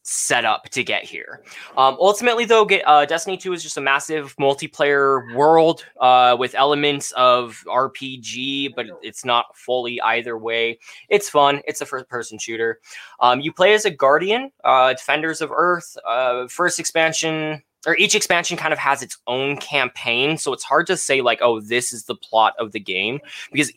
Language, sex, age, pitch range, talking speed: English, male, 20-39, 120-165 Hz, 180 wpm